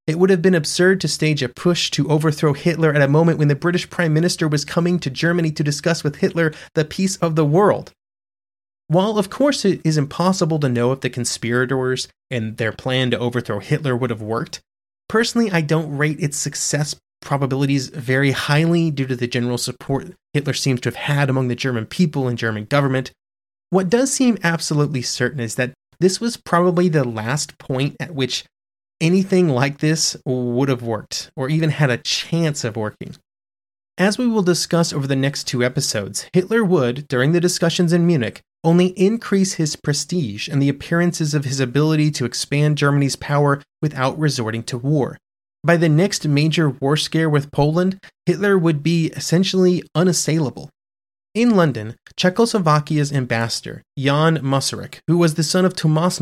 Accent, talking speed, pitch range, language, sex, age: American, 175 wpm, 130-170 Hz, English, male, 30-49